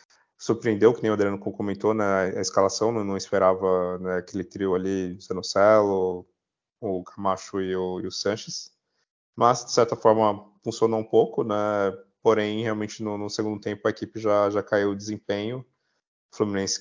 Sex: male